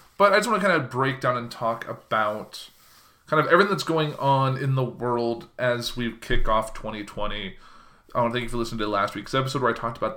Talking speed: 240 wpm